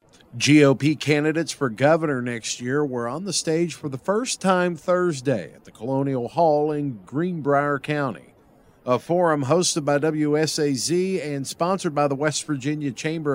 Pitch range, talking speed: 130-160 Hz, 155 wpm